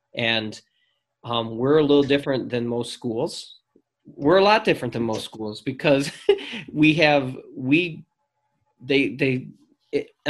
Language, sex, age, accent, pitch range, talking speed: English, male, 20-39, American, 110-135 Hz, 135 wpm